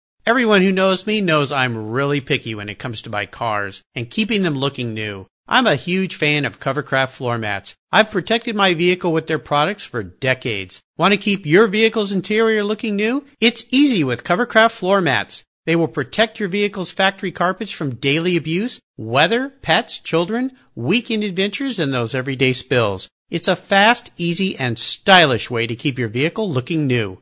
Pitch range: 130-210 Hz